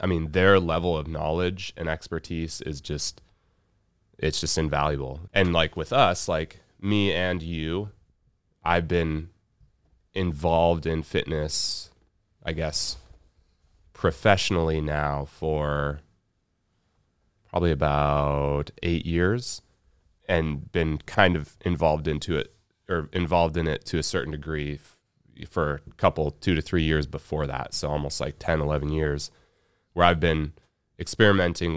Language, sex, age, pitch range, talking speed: English, male, 30-49, 75-90 Hz, 130 wpm